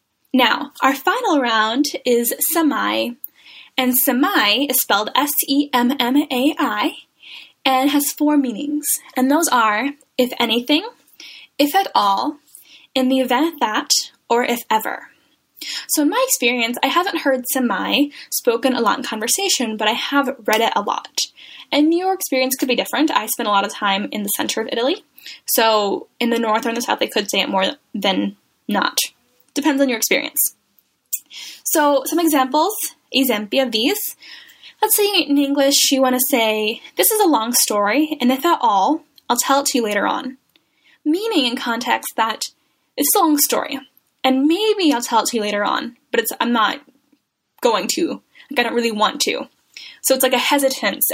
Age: 10-29